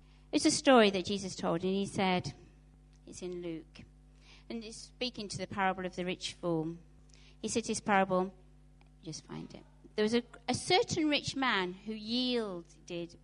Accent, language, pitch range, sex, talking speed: British, English, 180-230 Hz, female, 170 wpm